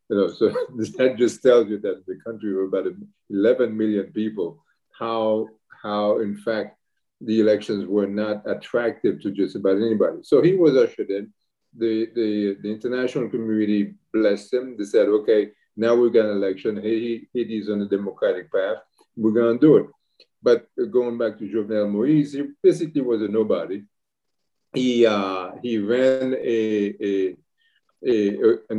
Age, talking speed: 50-69, 165 wpm